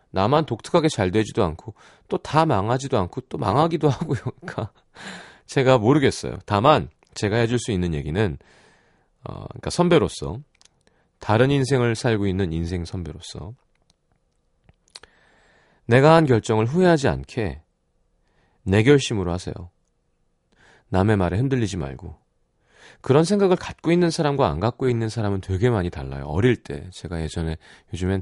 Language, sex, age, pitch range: Korean, male, 40-59, 90-145 Hz